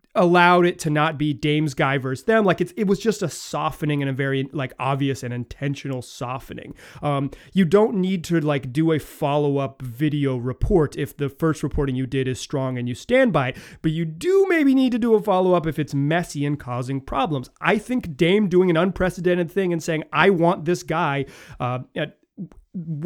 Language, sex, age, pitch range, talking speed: English, male, 30-49, 145-190 Hz, 200 wpm